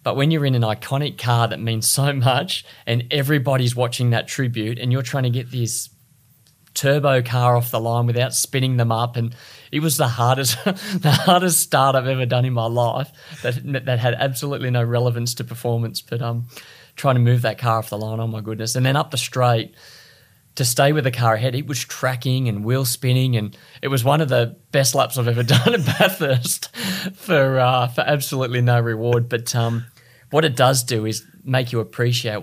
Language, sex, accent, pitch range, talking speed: English, male, Australian, 115-135 Hz, 205 wpm